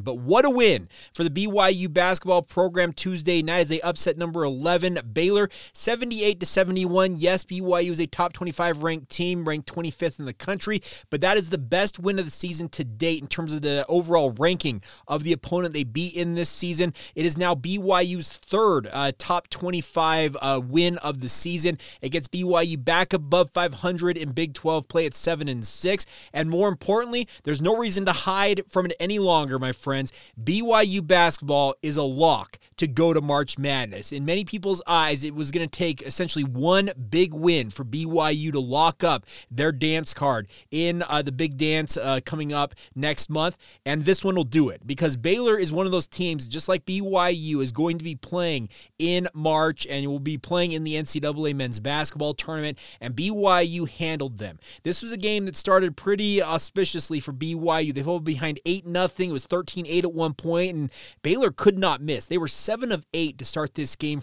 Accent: American